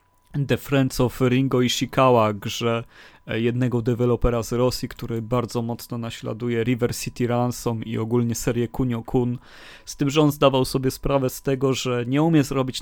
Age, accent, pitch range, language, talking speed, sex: 30-49, native, 110-125 Hz, Polish, 160 wpm, male